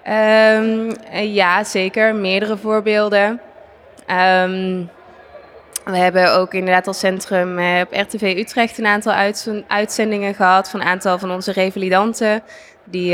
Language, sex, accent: Dutch, female, Dutch